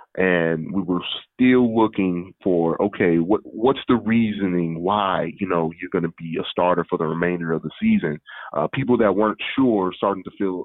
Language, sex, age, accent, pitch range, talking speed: English, male, 30-49, American, 90-110 Hz, 190 wpm